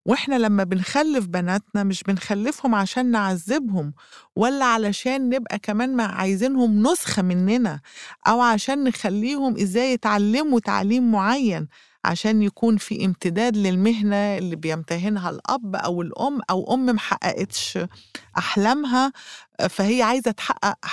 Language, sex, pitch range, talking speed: Arabic, female, 180-230 Hz, 110 wpm